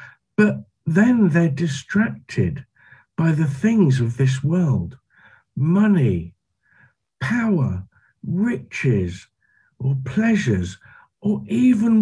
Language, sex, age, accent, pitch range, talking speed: English, male, 50-69, British, 120-180 Hz, 85 wpm